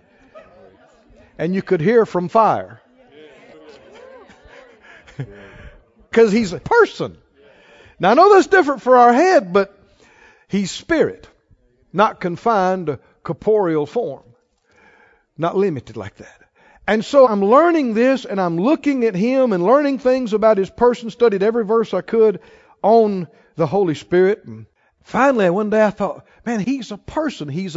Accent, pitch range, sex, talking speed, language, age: American, 195-275 Hz, male, 145 wpm, English, 60-79